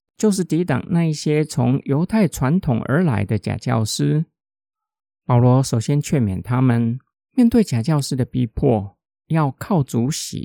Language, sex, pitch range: Chinese, male, 120-170 Hz